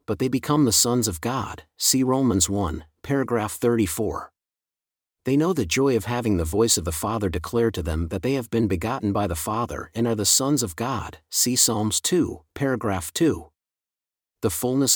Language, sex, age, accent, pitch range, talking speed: English, male, 50-69, American, 95-130 Hz, 190 wpm